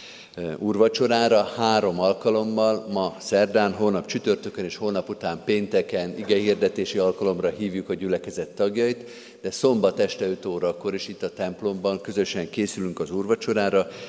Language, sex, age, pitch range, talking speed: Hungarian, male, 50-69, 95-125 Hz, 135 wpm